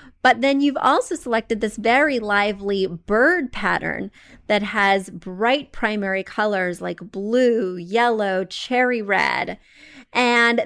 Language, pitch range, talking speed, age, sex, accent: English, 200-260 Hz, 120 wpm, 30-49, female, American